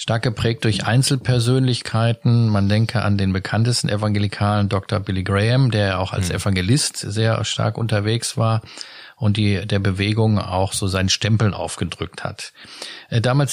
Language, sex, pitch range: German, male, 105-125 Hz